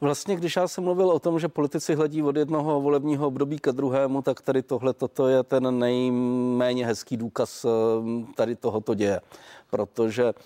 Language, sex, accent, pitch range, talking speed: Czech, male, native, 110-135 Hz, 165 wpm